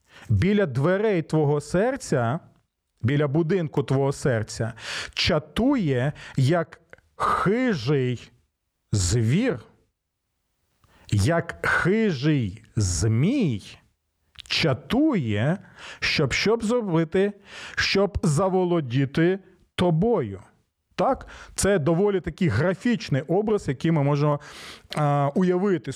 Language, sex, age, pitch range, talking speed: Ukrainian, male, 40-59, 135-190 Hz, 75 wpm